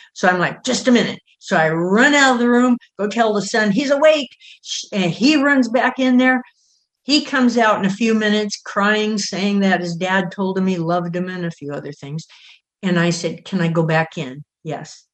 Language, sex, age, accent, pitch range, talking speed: English, female, 60-79, American, 155-200 Hz, 220 wpm